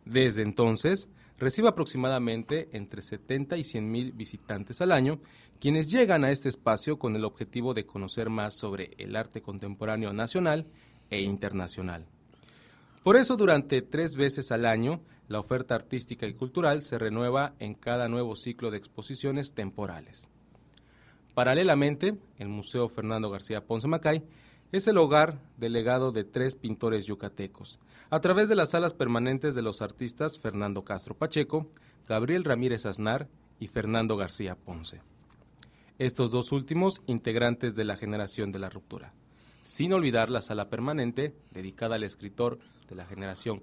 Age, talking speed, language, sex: 30-49, 145 wpm, English, male